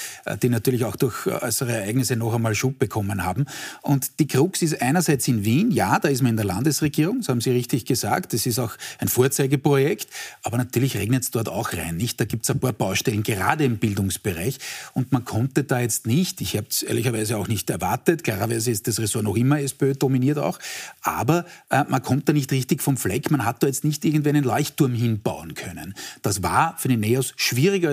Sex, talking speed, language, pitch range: male, 215 wpm, German, 115-145 Hz